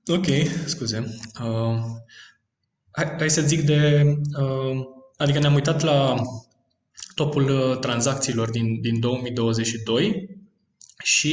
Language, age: Romanian, 20-39